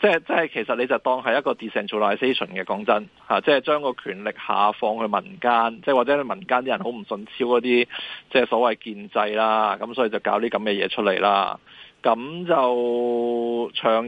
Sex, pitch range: male, 110-140 Hz